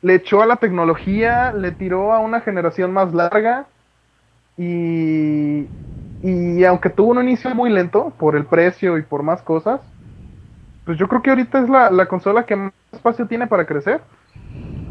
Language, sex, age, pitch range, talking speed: Spanish, male, 20-39, 155-200 Hz, 170 wpm